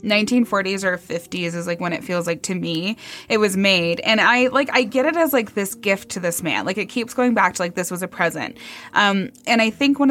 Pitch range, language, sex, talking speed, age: 175-205 Hz, English, female, 255 wpm, 20-39